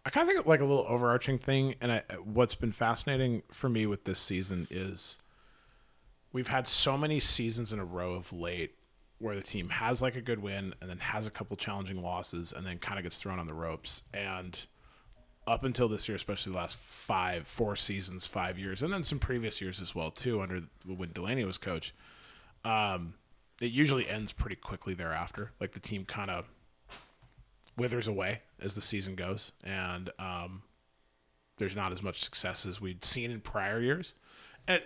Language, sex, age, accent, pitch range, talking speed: English, male, 30-49, American, 90-115 Hz, 190 wpm